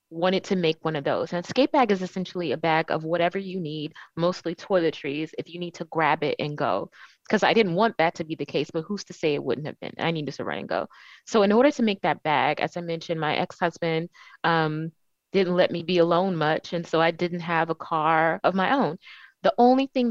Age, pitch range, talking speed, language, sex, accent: 20-39, 165-195 Hz, 245 wpm, English, female, American